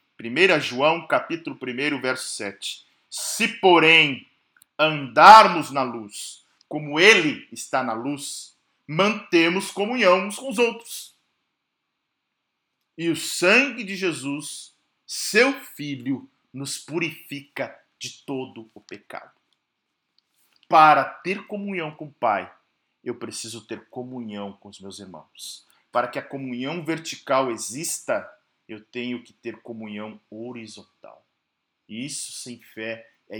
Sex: male